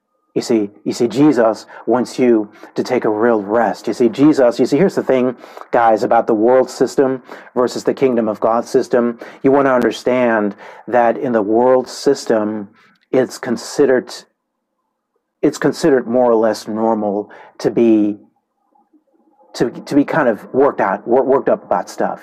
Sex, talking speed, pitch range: male, 165 wpm, 110-130 Hz